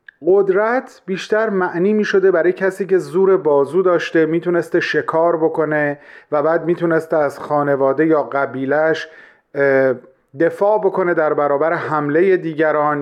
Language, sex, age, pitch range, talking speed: Persian, male, 40-59, 150-185 Hz, 125 wpm